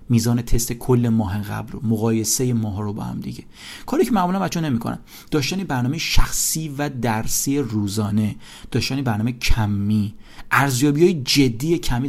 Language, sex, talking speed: English, male, 150 wpm